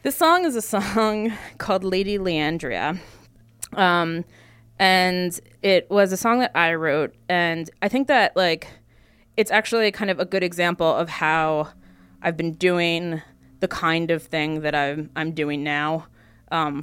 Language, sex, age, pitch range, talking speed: English, female, 20-39, 150-195 Hz, 155 wpm